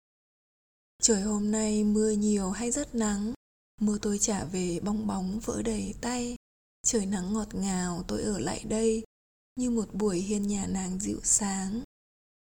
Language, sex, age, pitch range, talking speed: Vietnamese, female, 20-39, 200-225 Hz, 160 wpm